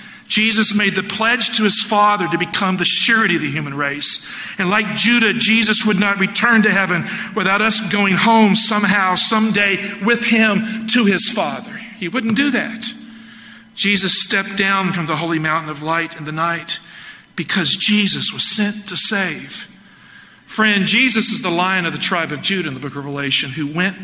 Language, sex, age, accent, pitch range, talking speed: English, male, 50-69, American, 150-220 Hz, 185 wpm